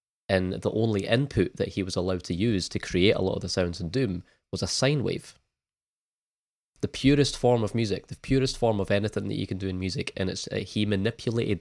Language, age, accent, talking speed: English, 20-39, British, 220 wpm